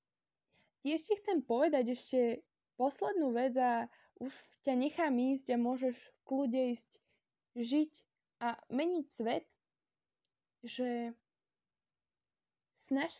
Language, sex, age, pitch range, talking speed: Slovak, female, 10-29, 245-310 Hz, 100 wpm